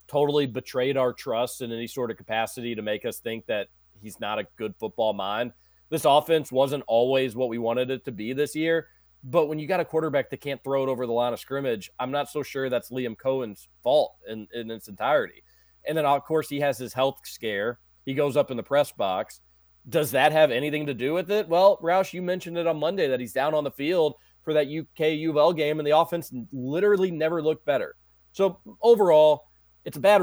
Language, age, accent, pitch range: English, 30-49, American, 120-160 Hz